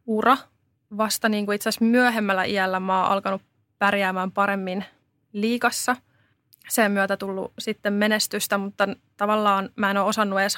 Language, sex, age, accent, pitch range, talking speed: Finnish, female, 20-39, native, 195-220 Hz, 145 wpm